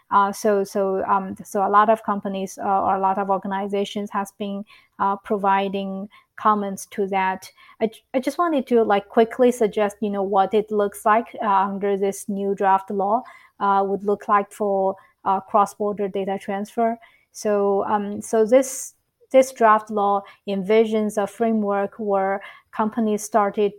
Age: 30-49